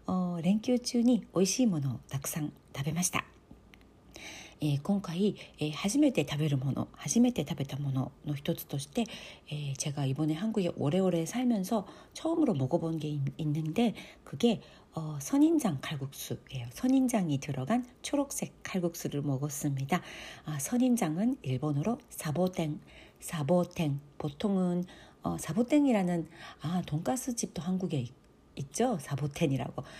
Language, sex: Korean, female